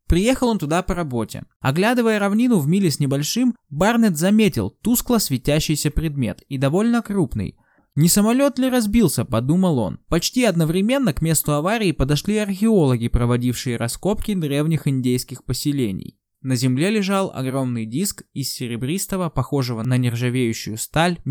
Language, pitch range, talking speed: Russian, 130-195 Hz, 135 wpm